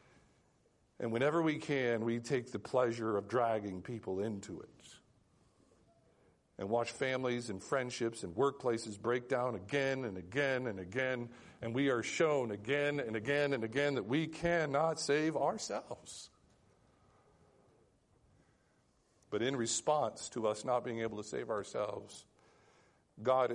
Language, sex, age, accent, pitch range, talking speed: English, male, 50-69, American, 130-215 Hz, 135 wpm